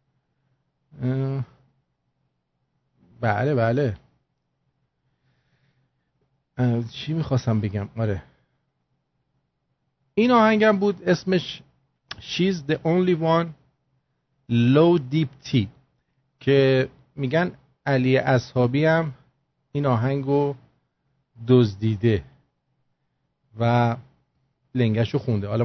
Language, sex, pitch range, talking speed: English, male, 130-170 Hz, 70 wpm